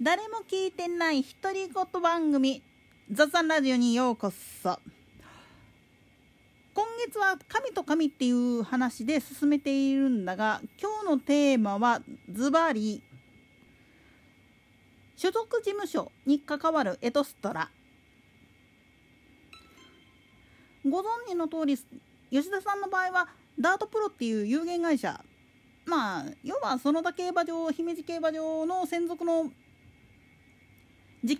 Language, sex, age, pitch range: Japanese, female, 40-59, 250-345 Hz